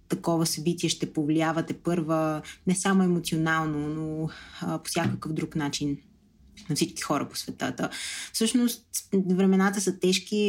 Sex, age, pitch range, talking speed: female, 20-39, 155-185 Hz, 130 wpm